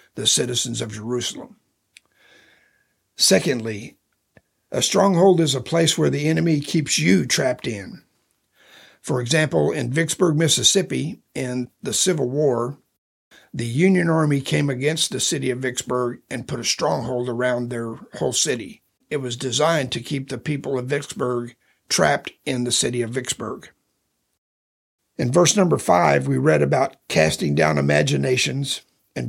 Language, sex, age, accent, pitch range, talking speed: English, male, 50-69, American, 120-165 Hz, 140 wpm